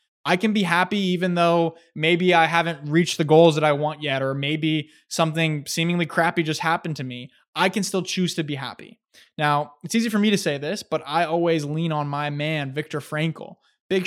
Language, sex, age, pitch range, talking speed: English, male, 20-39, 145-180 Hz, 215 wpm